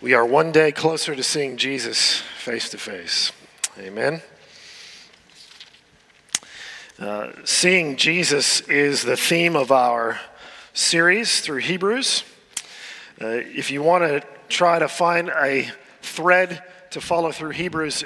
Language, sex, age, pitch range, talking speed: English, male, 40-59, 125-165 Hz, 115 wpm